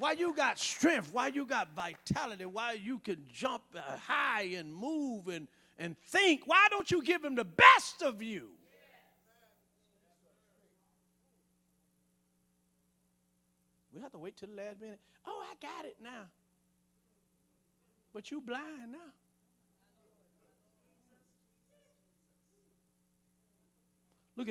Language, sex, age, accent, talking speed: English, male, 50-69, American, 115 wpm